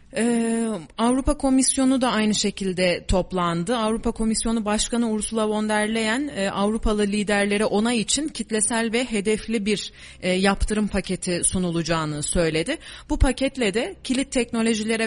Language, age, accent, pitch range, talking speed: Turkish, 30-49, native, 195-230 Hz, 130 wpm